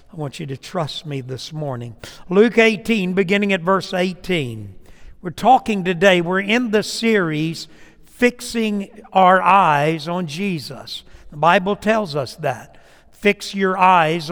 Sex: male